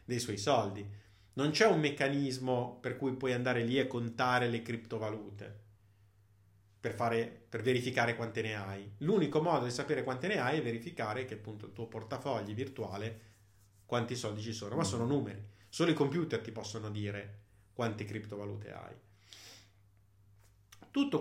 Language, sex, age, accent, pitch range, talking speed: Italian, male, 30-49, native, 105-140 Hz, 155 wpm